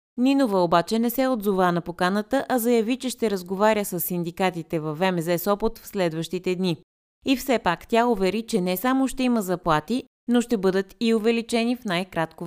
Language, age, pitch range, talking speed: Bulgarian, 30-49, 175-220 Hz, 180 wpm